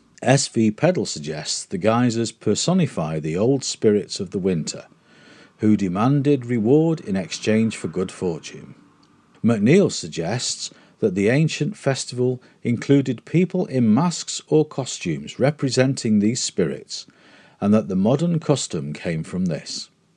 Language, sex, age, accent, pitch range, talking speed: English, male, 50-69, British, 105-150 Hz, 130 wpm